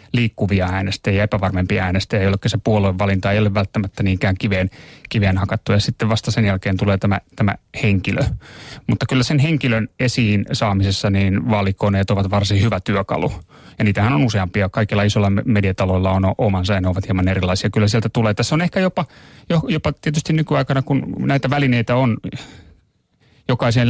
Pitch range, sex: 100-125 Hz, male